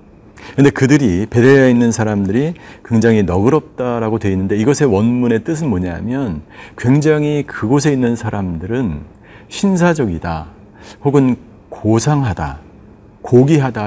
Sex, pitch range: male, 100-130 Hz